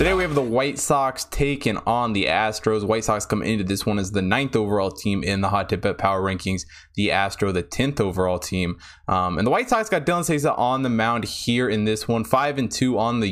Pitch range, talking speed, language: 100-135 Hz, 245 wpm, English